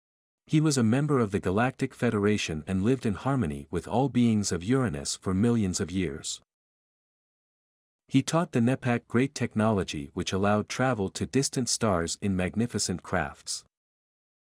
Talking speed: 150 wpm